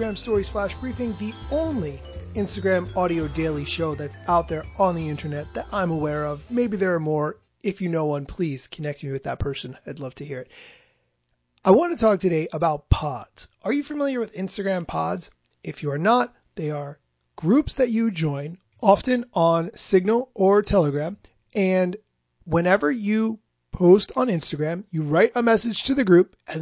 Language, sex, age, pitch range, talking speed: English, male, 30-49, 150-210 Hz, 180 wpm